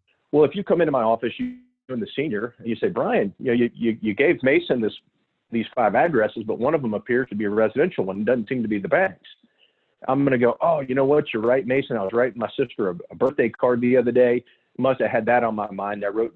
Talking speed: 270 wpm